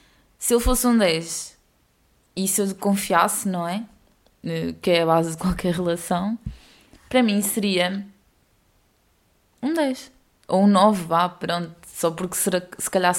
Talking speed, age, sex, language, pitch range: 145 wpm, 20-39, female, English, 170-200 Hz